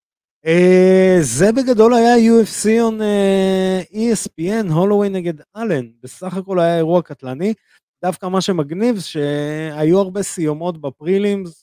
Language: Hebrew